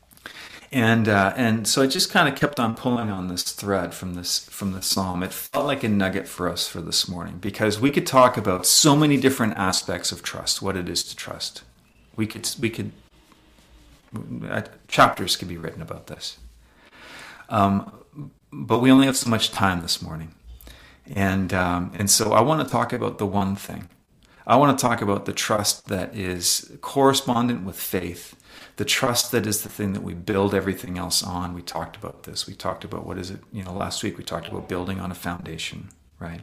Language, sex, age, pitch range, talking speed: English, male, 40-59, 90-115 Hz, 205 wpm